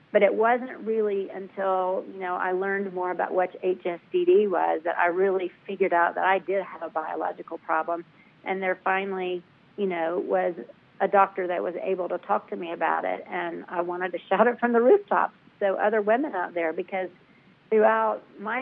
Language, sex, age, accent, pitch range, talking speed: English, female, 50-69, American, 180-205 Hz, 195 wpm